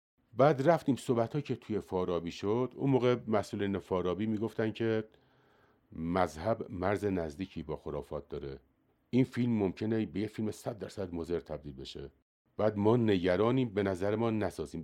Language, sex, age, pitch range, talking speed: Persian, male, 50-69, 90-120 Hz, 150 wpm